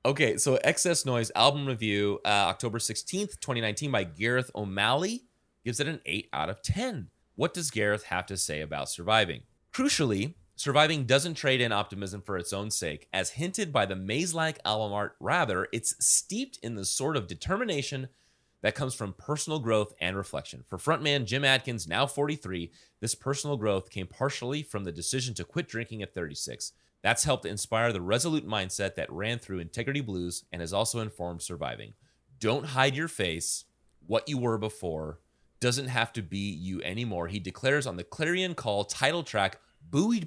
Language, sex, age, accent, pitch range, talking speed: English, male, 30-49, American, 100-145 Hz, 175 wpm